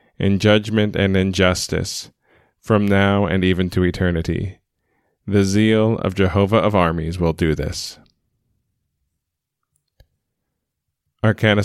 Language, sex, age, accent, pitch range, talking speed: English, male, 20-39, American, 90-105 Hz, 110 wpm